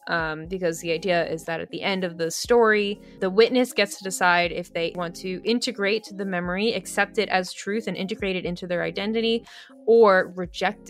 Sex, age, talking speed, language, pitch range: female, 20-39, 200 wpm, English, 170-215 Hz